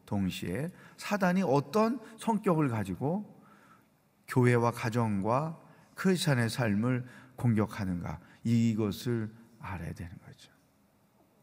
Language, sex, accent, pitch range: Korean, male, native, 115-175 Hz